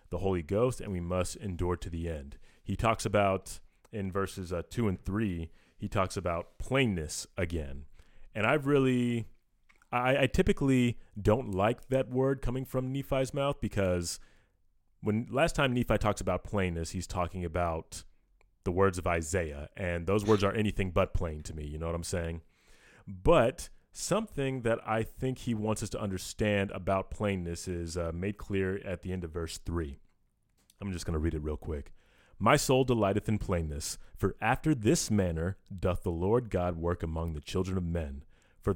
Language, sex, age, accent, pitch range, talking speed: English, male, 30-49, American, 85-115 Hz, 180 wpm